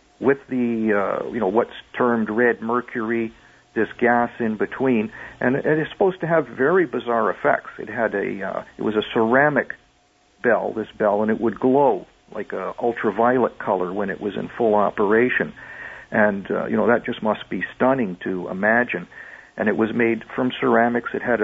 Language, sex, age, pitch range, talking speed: English, male, 50-69, 110-130 Hz, 185 wpm